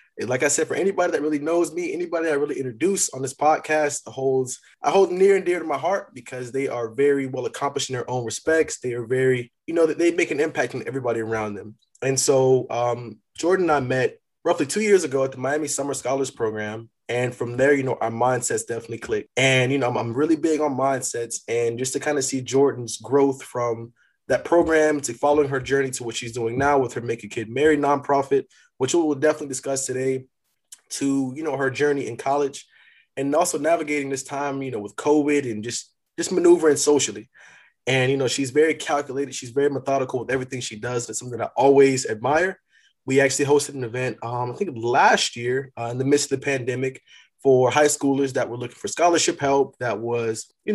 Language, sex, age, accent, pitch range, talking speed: English, male, 20-39, American, 125-145 Hz, 220 wpm